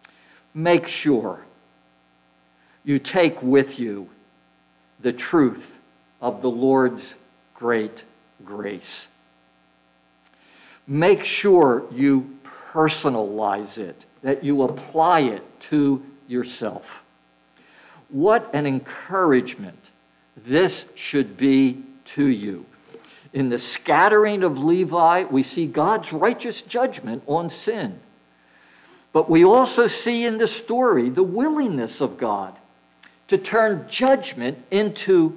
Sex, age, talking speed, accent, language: male, 60-79, 100 wpm, American, English